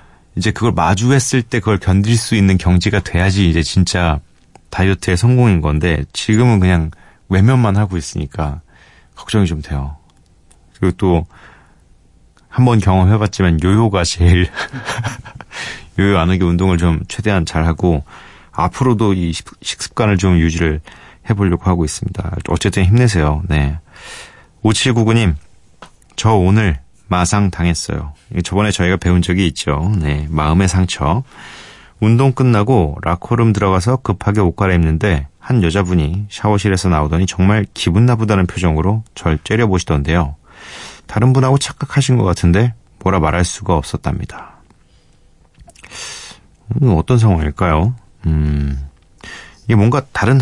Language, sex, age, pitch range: Korean, male, 30-49, 85-110 Hz